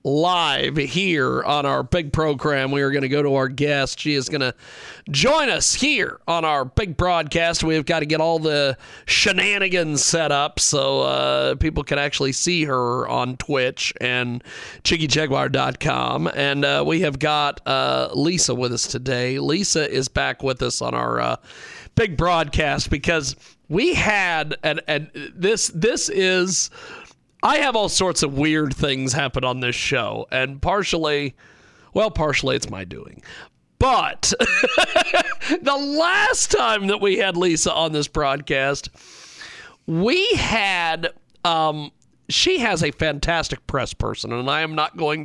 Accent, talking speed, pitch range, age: American, 155 wpm, 130-170 Hz, 40-59